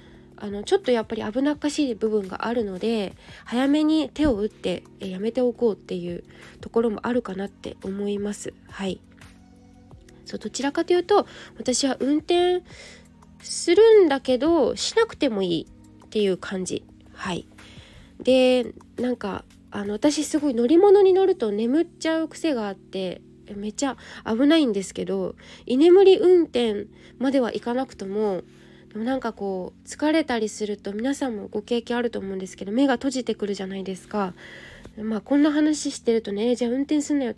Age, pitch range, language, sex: 20-39, 200-280 Hz, Japanese, female